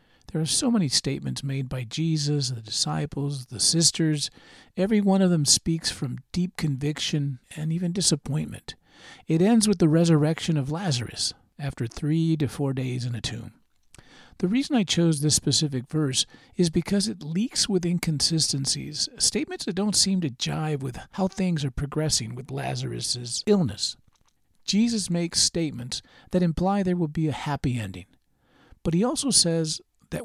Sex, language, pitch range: male, English, 135-180 Hz